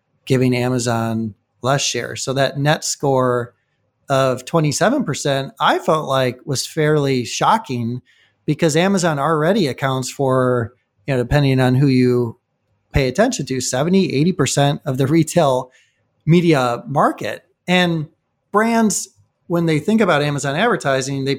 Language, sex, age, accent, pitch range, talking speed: English, male, 30-49, American, 125-155 Hz, 130 wpm